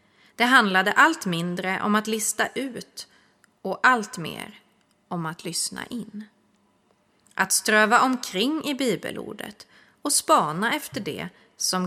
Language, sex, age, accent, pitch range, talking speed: Swedish, female, 30-49, native, 185-230 Hz, 125 wpm